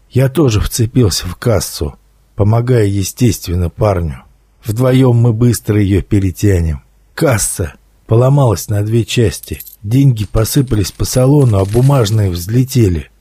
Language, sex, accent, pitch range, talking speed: Russian, male, native, 100-125 Hz, 115 wpm